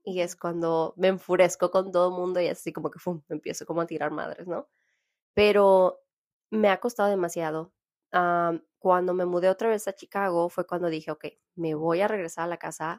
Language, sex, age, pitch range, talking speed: Spanish, female, 20-39, 165-190 Hz, 205 wpm